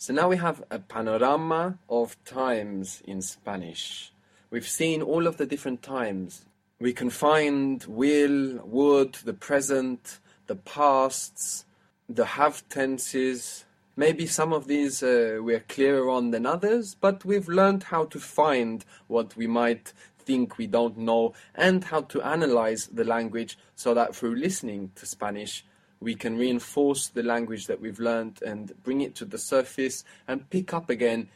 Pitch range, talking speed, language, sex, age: 110-145 Hz, 155 wpm, English, male, 20-39